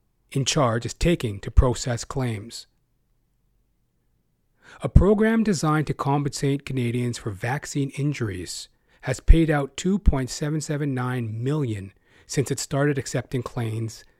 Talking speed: 125 wpm